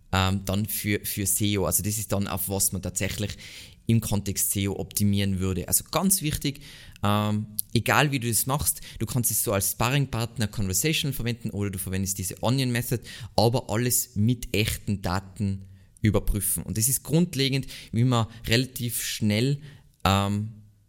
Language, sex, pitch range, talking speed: German, male, 100-120 Hz, 160 wpm